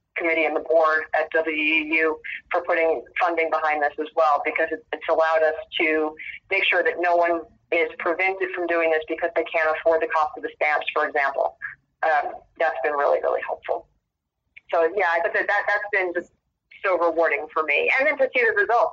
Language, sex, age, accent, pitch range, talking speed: English, female, 40-59, American, 160-215 Hz, 200 wpm